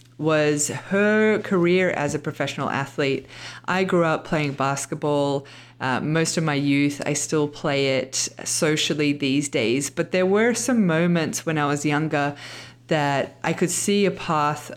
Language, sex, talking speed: English, female, 160 wpm